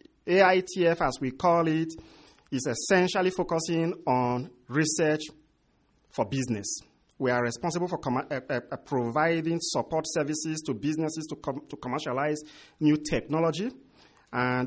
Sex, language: male, English